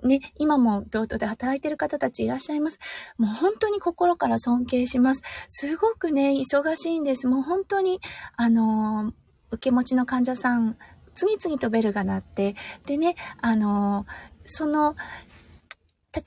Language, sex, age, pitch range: Japanese, female, 20-39, 205-295 Hz